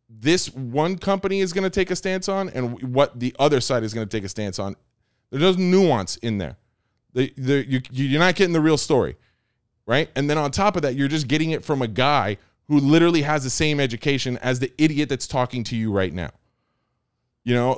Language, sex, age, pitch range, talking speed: English, male, 20-39, 125-165 Hz, 225 wpm